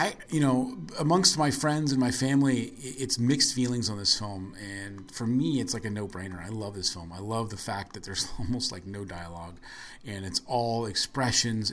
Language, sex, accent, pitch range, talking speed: English, male, American, 100-130 Hz, 205 wpm